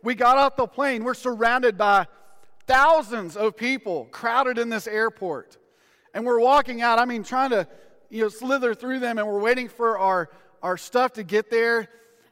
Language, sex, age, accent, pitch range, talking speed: English, male, 40-59, American, 205-245 Hz, 185 wpm